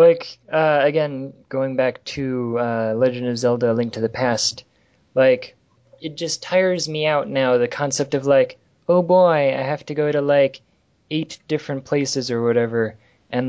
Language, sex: English, male